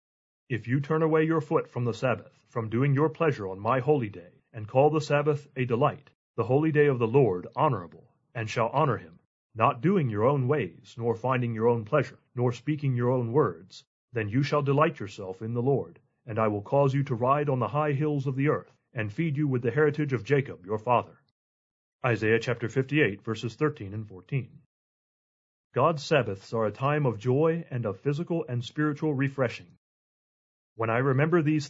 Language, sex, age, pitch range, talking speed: English, male, 30-49, 115-145 Hz, 200 wpm